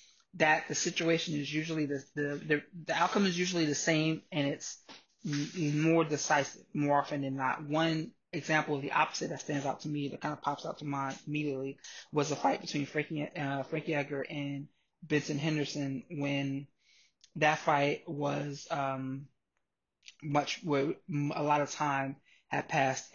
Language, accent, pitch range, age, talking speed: English, American, 145-165 Hz, 20-39, 165 wpm